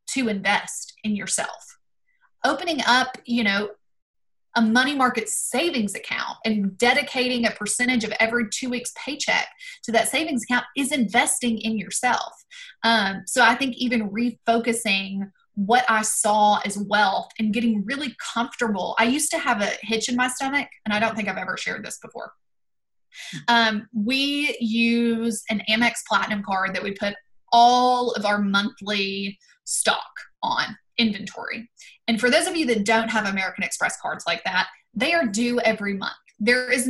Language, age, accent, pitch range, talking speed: English, 20-39, American, 210-250 Hz, 165 wpm